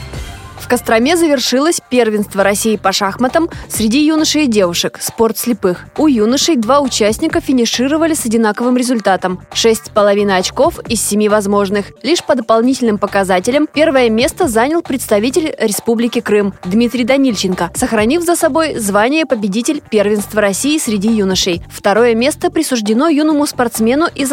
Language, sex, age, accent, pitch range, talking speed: Russian, female, 20-39, native, 210-280 Hz, 135 wpm